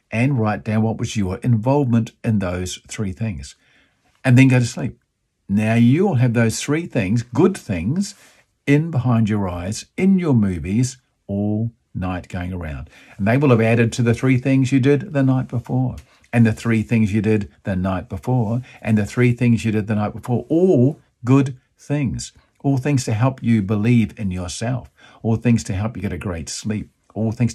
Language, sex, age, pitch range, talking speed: English, male, 50-69, 100-125 Hz, 195 wpm